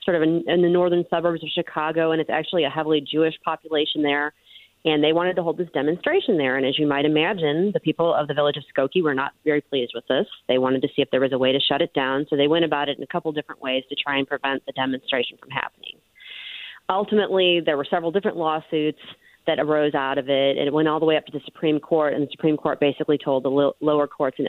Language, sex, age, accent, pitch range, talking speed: English, female, 30-49, American, 140-170 Hz, 260 wpm